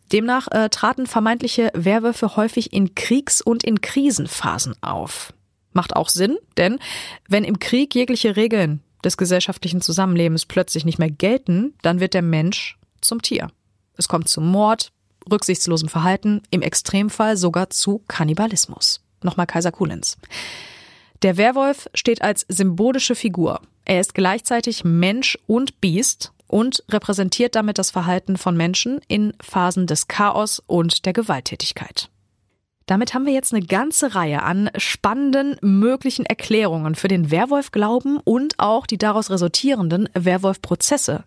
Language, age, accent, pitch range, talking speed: German, 30-49, German, 170-230 Hz, 135 wpm